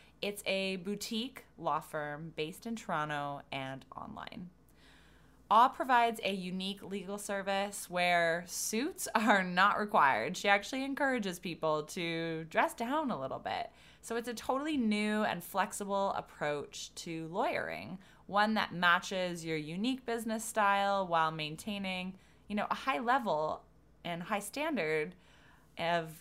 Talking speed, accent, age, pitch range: 135 wpm, American, 20-39, 165-220 Hz